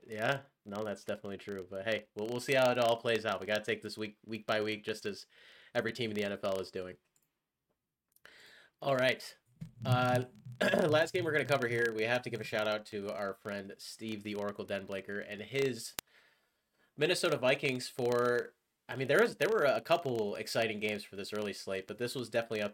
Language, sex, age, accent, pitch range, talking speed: English, male, 30-49, American, 100-120 Hz, 215 wpm